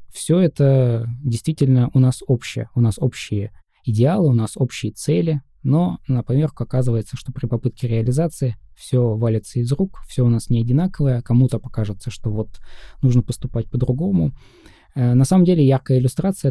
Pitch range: 110-130 Hz